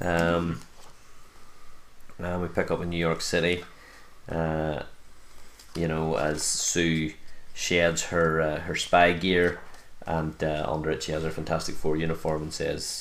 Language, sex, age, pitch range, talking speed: English, male, 20-39, 80-85 Hz, 150 wpm